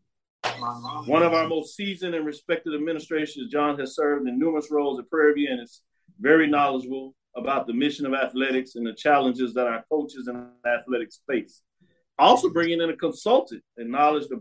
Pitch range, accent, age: 135-175 Hz, American, 40-59